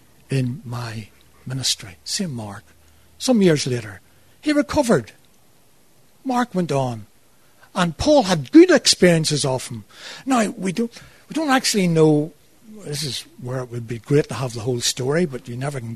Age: 60-79